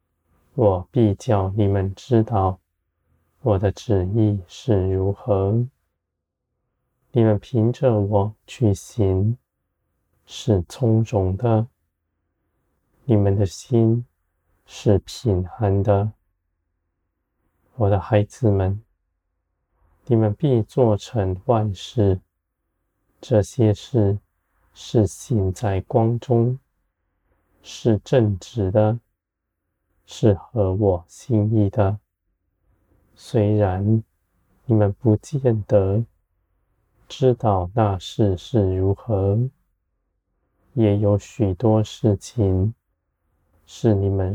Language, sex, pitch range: Chinese, male, 85-110 Hz